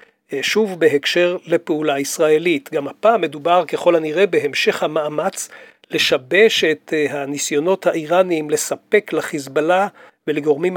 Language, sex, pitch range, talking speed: English, male, 155-190 Hz, 100 wpm